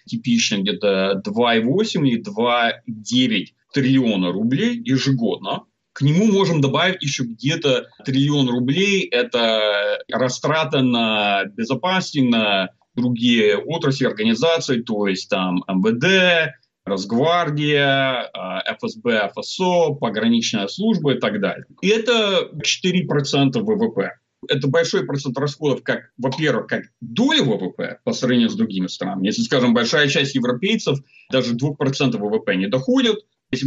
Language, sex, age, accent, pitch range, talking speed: Russian, male, 30-49, native, 125-195 Hz, 115 wpm